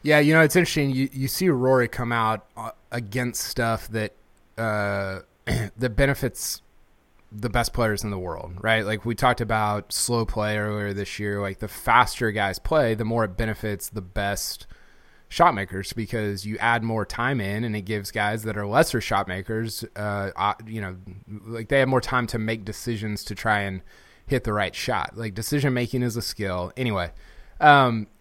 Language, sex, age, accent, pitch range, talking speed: English, male, 20-39, American, 105-125 Hz, 185 wpm